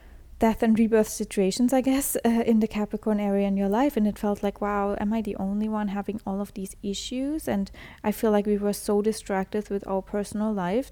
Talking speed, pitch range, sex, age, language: 225 wpm, 195-225 Hz, female, 10-29, English